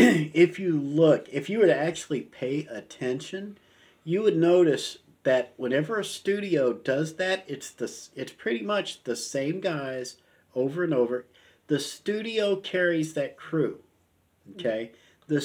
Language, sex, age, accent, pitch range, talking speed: English, male, 50-69, American, 130-170 Hz, 145 wpm